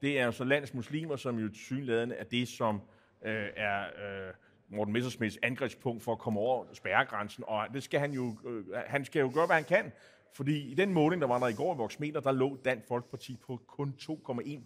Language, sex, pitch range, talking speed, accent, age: Danish, male, 115-145 Hz, 215 wpm, native, 30-49